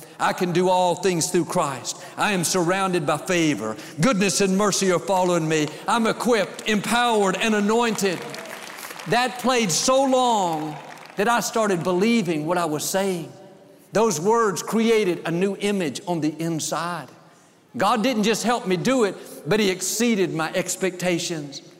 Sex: male